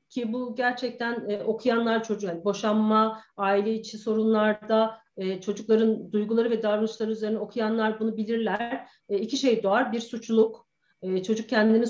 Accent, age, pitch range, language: native, 40-59, 210-270 Hz, Turkish